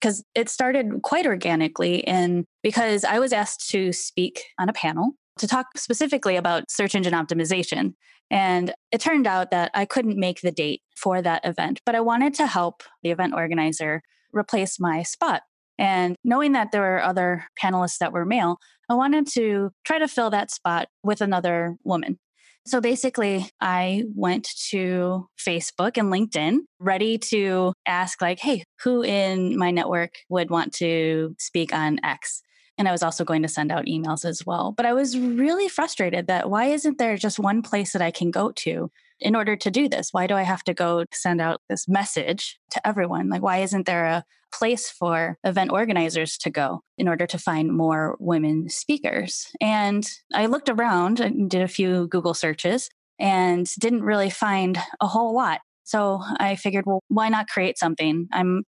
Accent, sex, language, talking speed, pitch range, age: American, female, English, 185 wpm, 175-230 Hz, 10-29